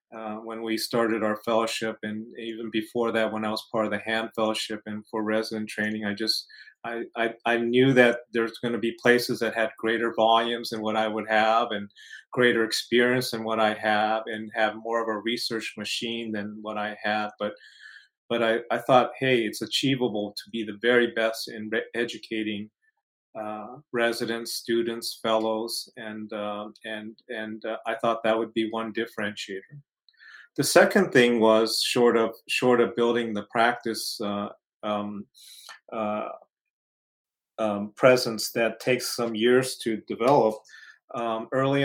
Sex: male